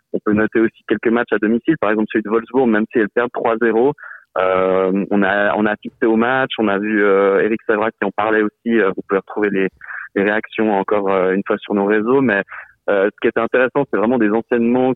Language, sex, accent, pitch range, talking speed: French, male, French, 100-120 Hz, 235 wpm